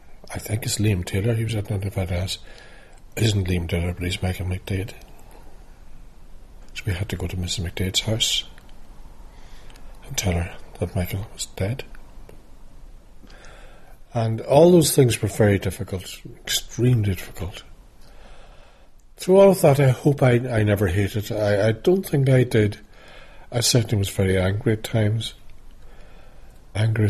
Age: 60-79